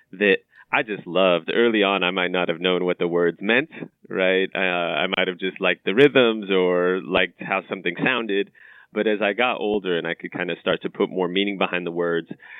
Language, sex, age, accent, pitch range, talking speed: English, male, 20-39, American, 90-100 Hz, 225 wpm